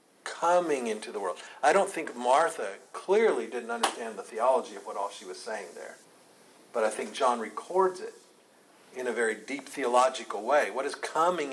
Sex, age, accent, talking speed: male, 50-69, American, 180 wpm